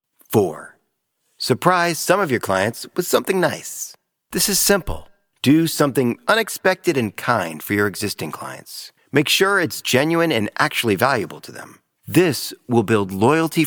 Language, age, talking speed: English, 40-59, 150 wpm